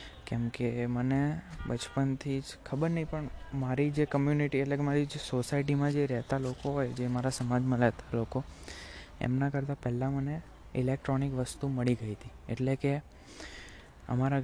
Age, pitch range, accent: 20-39, 115-135 Hz, native